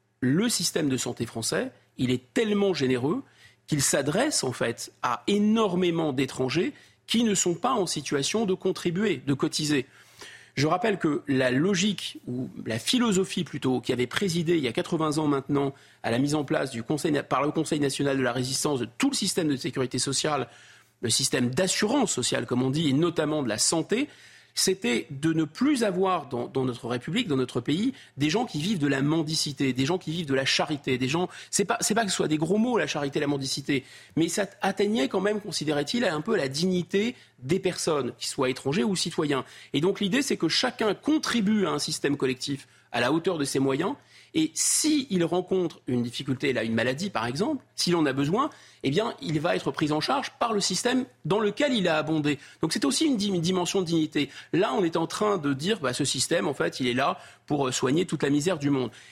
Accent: French